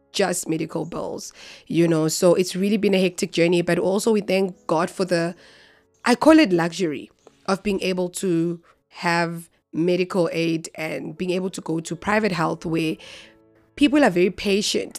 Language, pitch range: English, 170-205 Hz